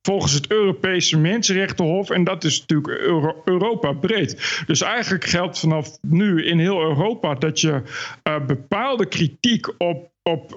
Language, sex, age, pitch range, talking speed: Dutch, male, 50-69, 160-200 Hz, 150 wpm